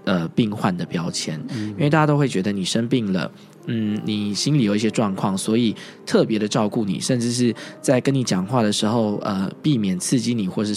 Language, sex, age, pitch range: Chinese, male, 20-39, 105-140 Hz